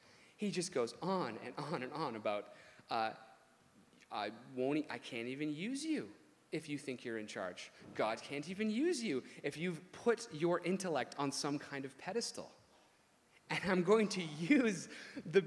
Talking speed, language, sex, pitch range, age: 175 wpm, English, male, 155-235 Hz, 30-49